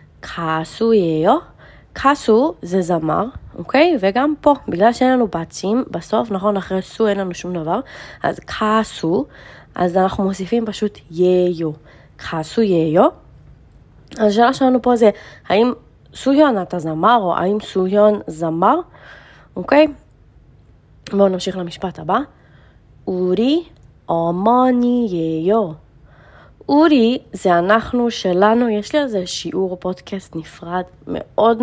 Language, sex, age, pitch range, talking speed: Hebrew, female, 20-39, 175-225 Hz, 110 wpm